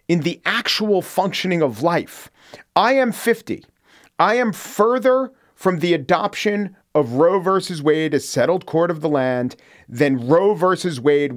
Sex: male